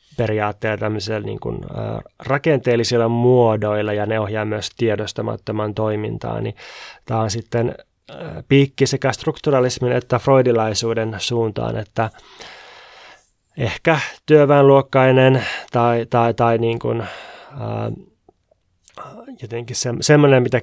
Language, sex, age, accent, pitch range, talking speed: Finnish, male, 20-39, native, 110-125 Hz, 110 wpm